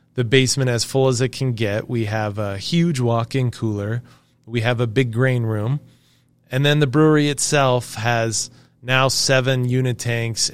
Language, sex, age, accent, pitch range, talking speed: English, male, 20-39, American, 110-135 Hz, 170 wpm